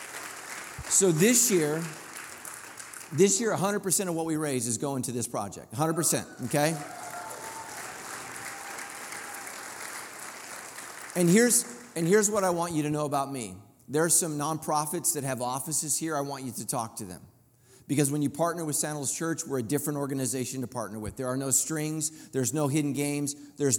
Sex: male